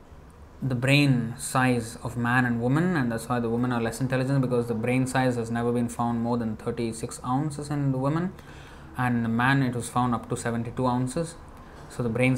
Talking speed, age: 210 wpm, 20-39